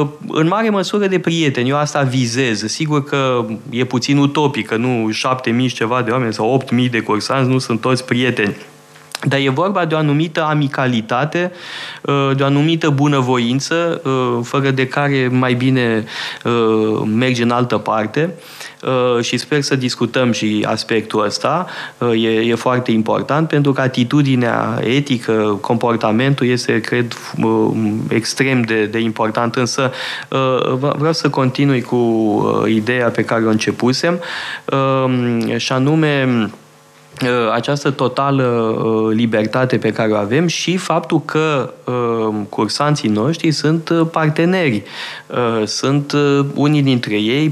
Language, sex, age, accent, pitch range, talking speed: Romanian, male, 20-39, native, 115-140 Hz, 130 wpm